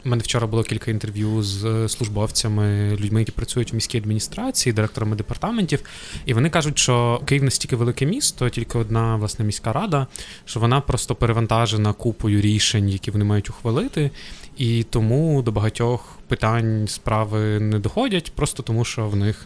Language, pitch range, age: Ukrainian, 110-125 Hz, 20-39